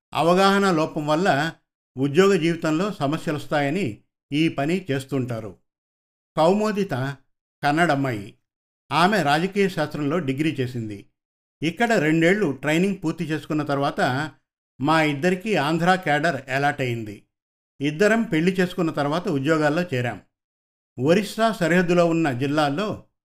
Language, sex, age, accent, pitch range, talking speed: Telugu, male, 50-69, native, 140-175 Hz, 95 wpm